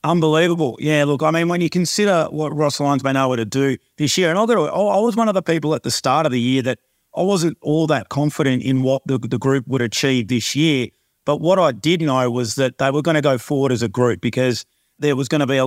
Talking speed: 265 wpm